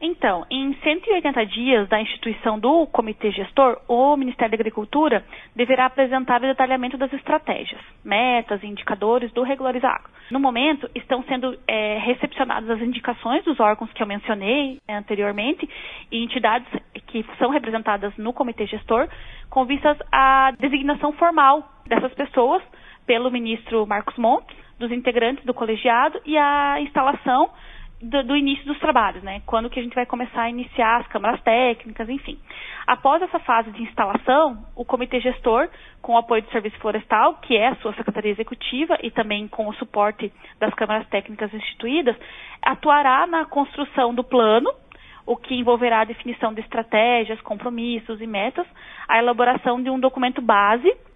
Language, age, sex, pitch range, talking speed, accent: Portuguese, 20-39, female, 225-270 Hz, 155 wpm, Brazilian